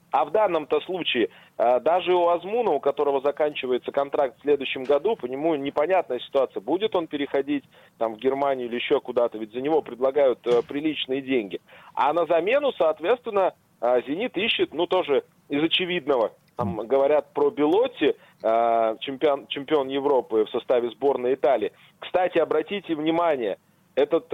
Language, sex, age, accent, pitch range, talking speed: Russian, male, 20-39, native, 140-225 Hz, 140 wpm